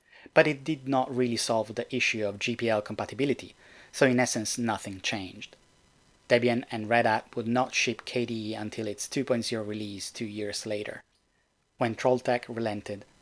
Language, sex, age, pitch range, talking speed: English, male, 30-49, 110-125 Hz, 155 wpm